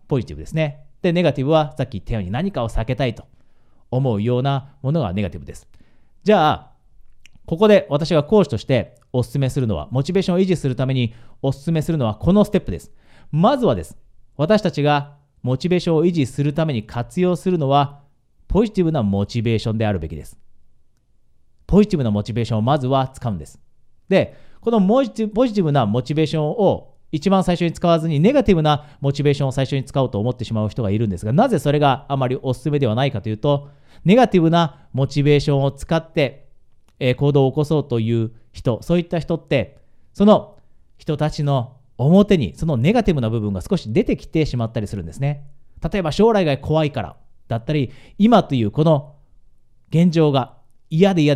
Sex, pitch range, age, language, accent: male, 120-165 Hz, 40-59, Japanese, native